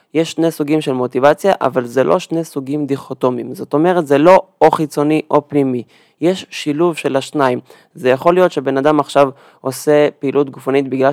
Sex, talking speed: male, 180 wpm